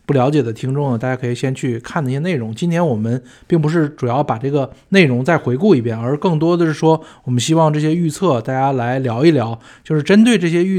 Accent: native